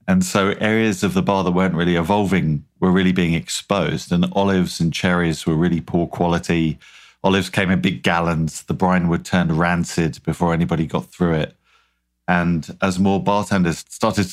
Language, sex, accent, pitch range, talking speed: English, male, British, 85-95 Hz, 175 wpm